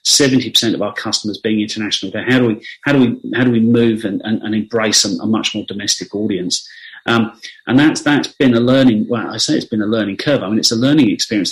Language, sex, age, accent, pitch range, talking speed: English, male, 40-59, British, 110-125 Hz, 255 wpm